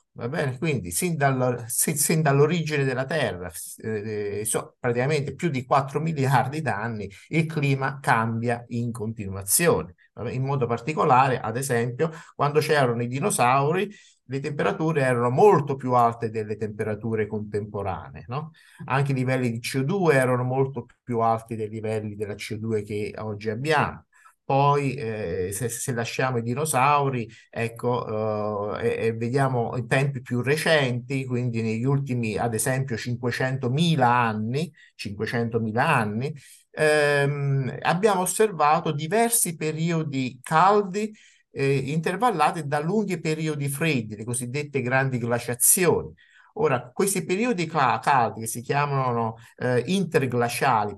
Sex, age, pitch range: male, 50-69, 115-150 Hz